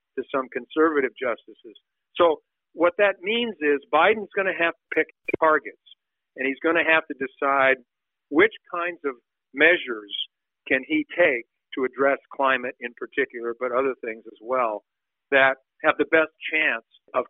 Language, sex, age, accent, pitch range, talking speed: English, male, 50-69, American, 130-165 Hz, 160 wpm